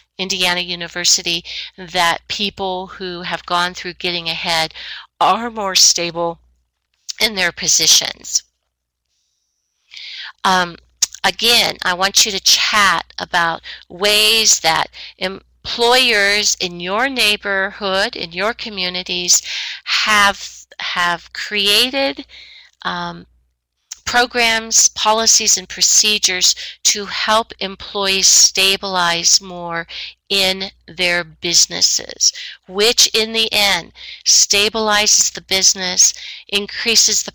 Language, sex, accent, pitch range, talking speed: English, female, American, 175-215 Hz, 90 wpm